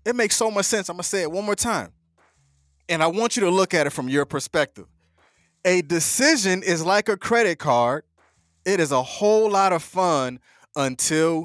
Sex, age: male, 20-39